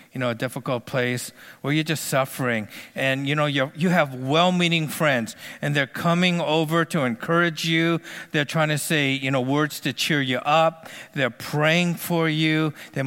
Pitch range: 135-170 Hz